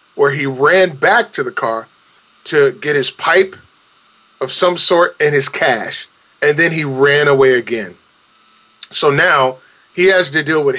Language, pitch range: English, 135-180 Hz